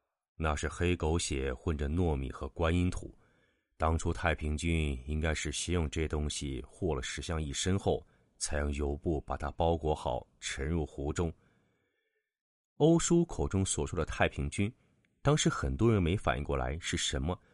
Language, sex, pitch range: Chinese, male, 75-100 Hz